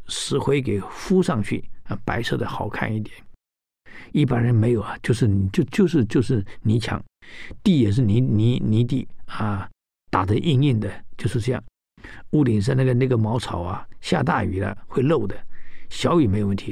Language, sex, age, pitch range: Chinese, male, 60-79, 105-125 Hz